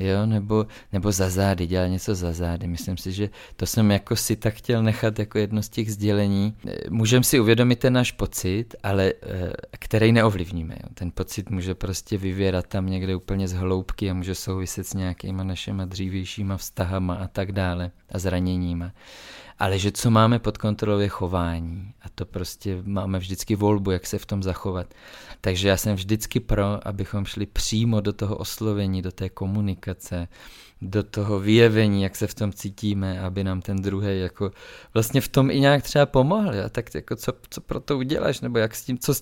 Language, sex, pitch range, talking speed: Czech, male, 95-110 Hz, 190 wpm